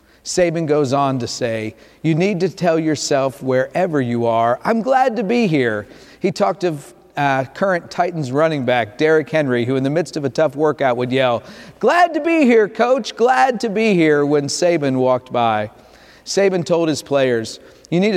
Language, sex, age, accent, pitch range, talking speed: English, male, 40-59, American, 130-175 Hz, 190 wpm